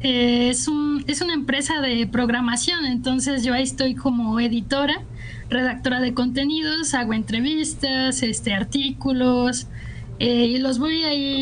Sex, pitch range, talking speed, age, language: female, 235-275 Hz, 140 wpm, 10-29, Spanish